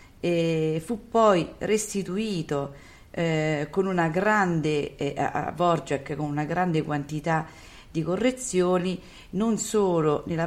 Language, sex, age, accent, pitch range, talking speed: Italian, female, 40-59, native, 150-185 Hz, 115 wpm